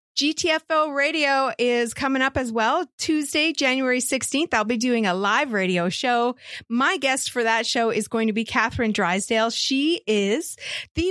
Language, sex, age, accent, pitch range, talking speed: English, female, 40-59, American, 220-275 Hz, 165 wpm